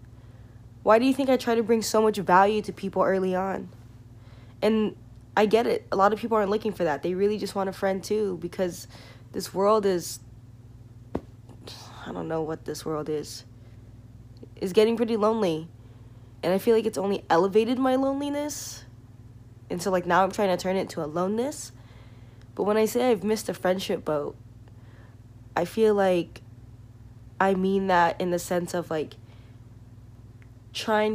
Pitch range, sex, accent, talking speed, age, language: 115-190 Hz, female, American, 175 wpm, 20-39, English